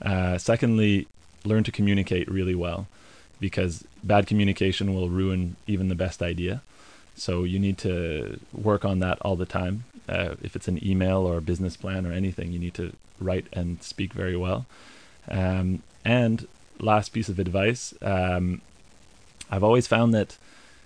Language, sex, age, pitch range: English, male, 20-39, 90-105 Hz